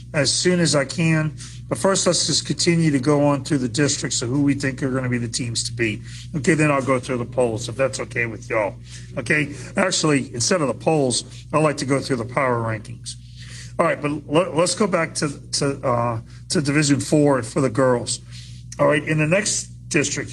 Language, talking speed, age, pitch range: English, 220 wpm, 40-59, 120-150 Hz